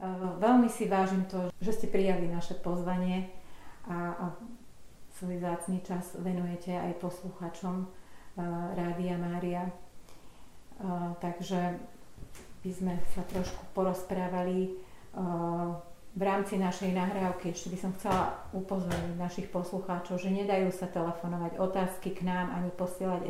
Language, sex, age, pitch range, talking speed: Slovak, female, 40-59, 175-190 Hz, 115 wpm